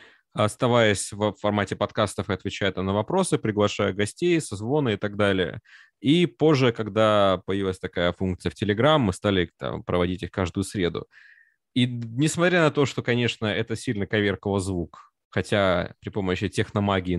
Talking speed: 150 wpm